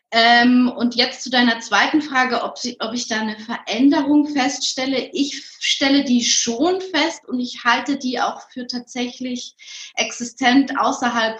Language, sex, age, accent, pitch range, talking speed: German, female, 20-39, German, 225-275 Hz, 145 wpm